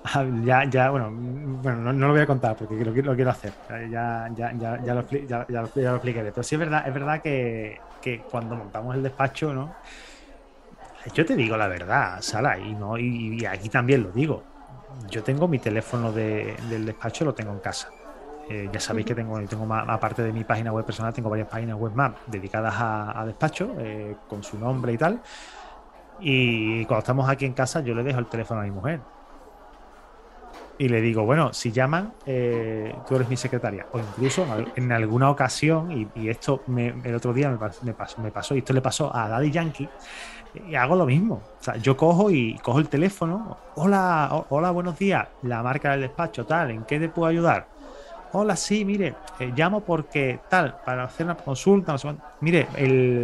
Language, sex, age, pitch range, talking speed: Spanish, male, 30-49, 115-150 Hz, 205 wpm